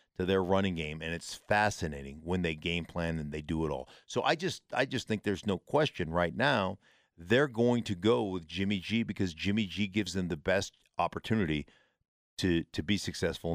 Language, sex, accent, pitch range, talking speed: English, male, American, 85-105 Hz, 205 wpm